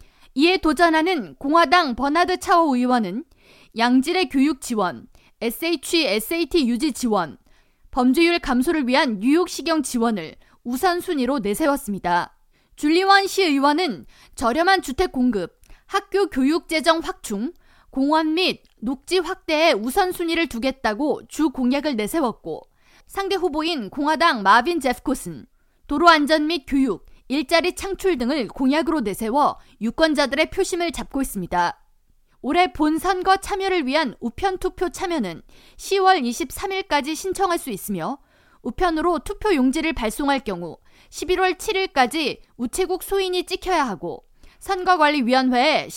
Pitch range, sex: 255-360 Hz, female